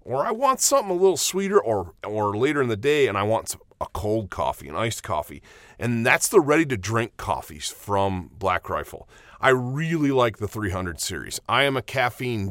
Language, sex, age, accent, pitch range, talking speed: English, male, 40-59, American, 100-135 Hz, 190 wpm